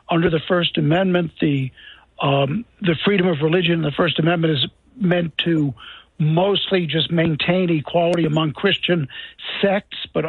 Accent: American